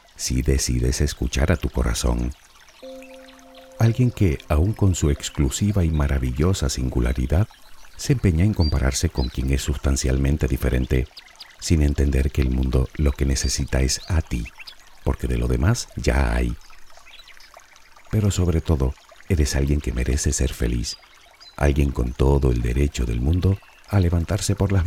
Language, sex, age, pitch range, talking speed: Spanish, male, 50-69, 65-85 Hz, 145 wpm